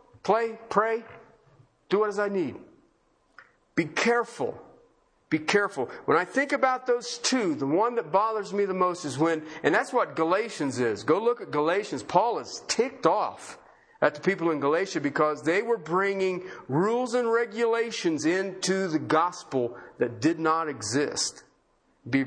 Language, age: English, 50-69